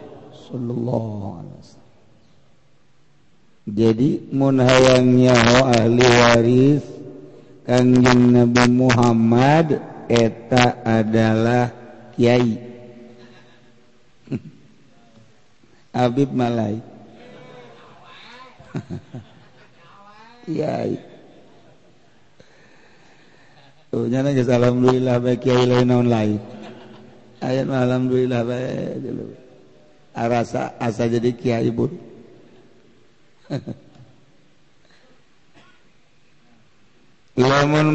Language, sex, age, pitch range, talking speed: Indonesian, male, 50-69, 120-150 Hz, 45 wpm